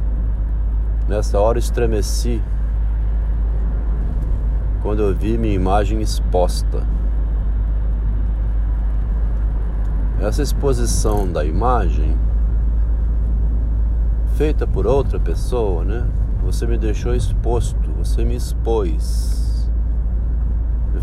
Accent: Brazilian